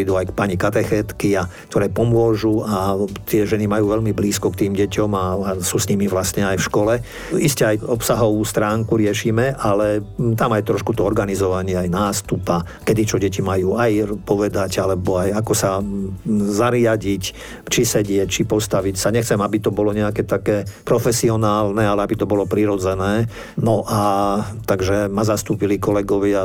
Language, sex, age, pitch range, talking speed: Slovak, male, 50-69, 100-110 Hz, 160 wpm